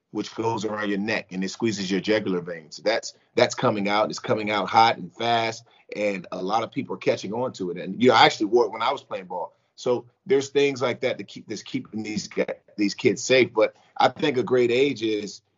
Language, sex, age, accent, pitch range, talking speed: English, male, 30-49, American, 100-130 Hz, 245 wpm